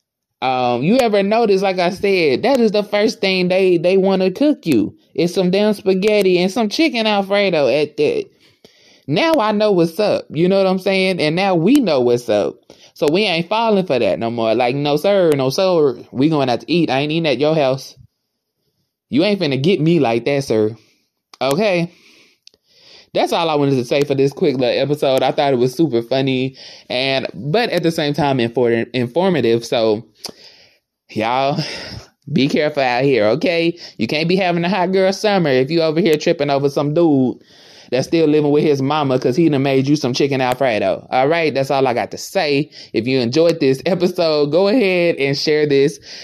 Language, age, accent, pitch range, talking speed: English, 20-39, American, 130-190 Hz, 205 wpm